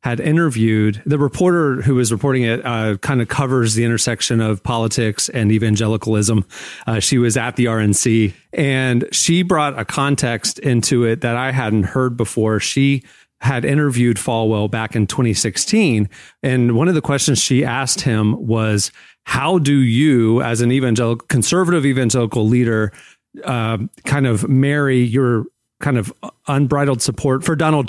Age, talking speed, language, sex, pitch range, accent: 30-49, 155 wpm, English, male, 115-145 Hz, American